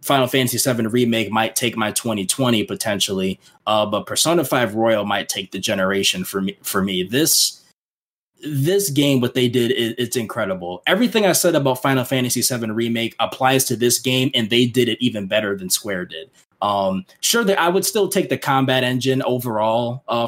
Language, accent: English, American